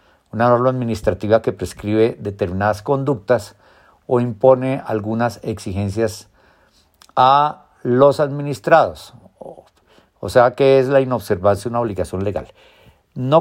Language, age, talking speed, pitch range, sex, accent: Spanish, 50-69, 110 wpm, 105-135 Hz, male, Mexican